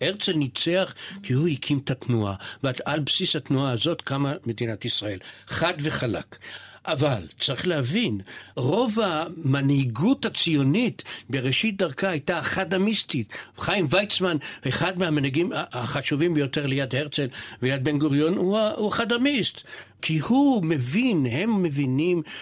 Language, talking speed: Hebrew, 130 wpm